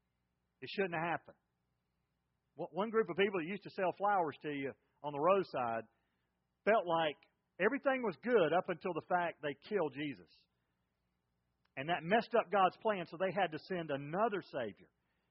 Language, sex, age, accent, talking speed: English, male, 40-59, American, 170 wpm